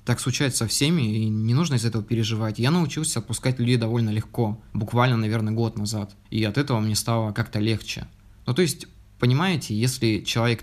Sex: male